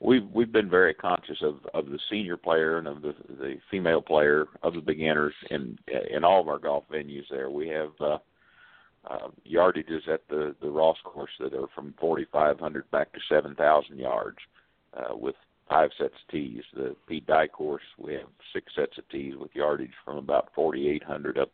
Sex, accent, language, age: male, American, English, 50-69